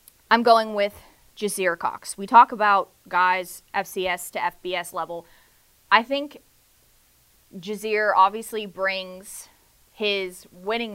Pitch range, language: 175-210 Hz, English